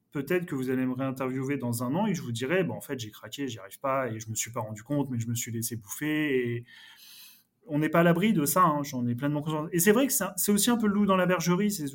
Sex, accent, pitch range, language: male, French, 120-180 Hz, French